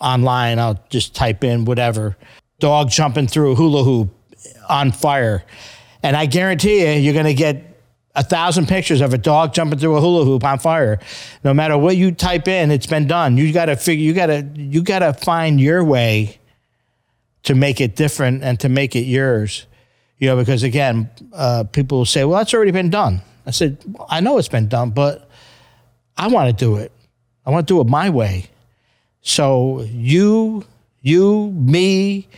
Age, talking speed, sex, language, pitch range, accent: 50-69, 190 wpm, male, English, 120-155 Hz, American